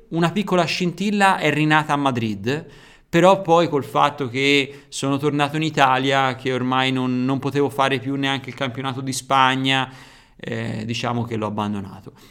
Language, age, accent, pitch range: Italian, 30-49, native, 120-145 Hz